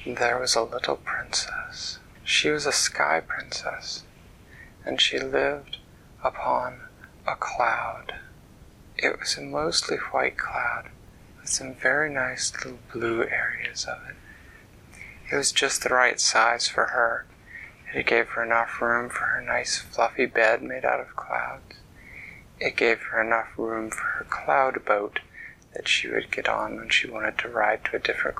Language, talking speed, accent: English, 160 wpm, American